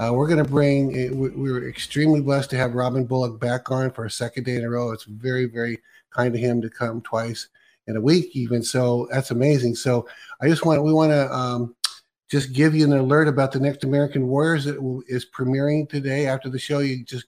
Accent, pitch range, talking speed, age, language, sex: American, 125-150 Hz, 220 wpm, 50-69, English, male